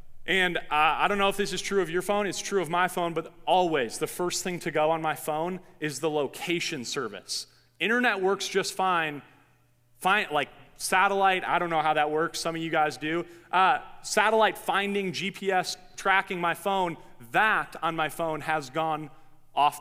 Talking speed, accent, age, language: 190 wpm, American, 30-49, English